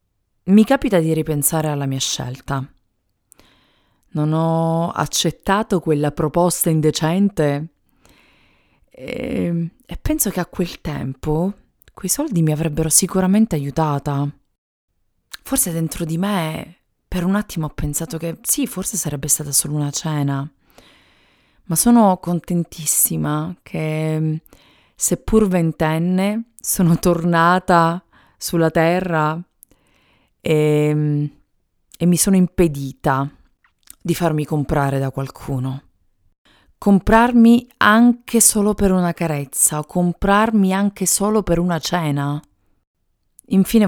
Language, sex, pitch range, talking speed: Italian, female, 145-185 Hz, 105 wpm